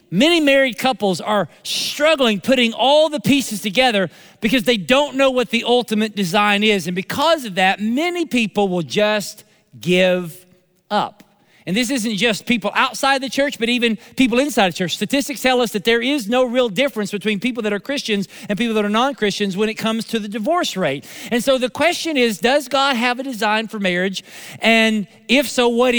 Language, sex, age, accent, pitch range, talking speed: English, male, 40-59, American, 190-245 Hz, 195 wpm